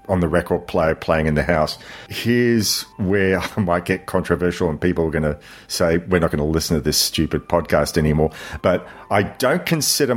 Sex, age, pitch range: male, 40-59, 85-100 Hz